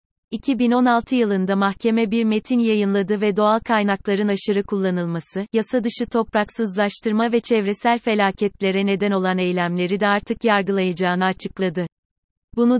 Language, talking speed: Turkish, 115 wpm